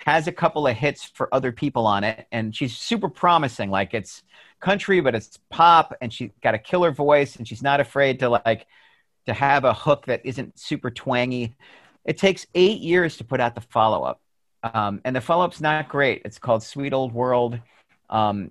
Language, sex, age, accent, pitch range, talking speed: English, male, 40-59, American, 115-145 Hz, 200 wpm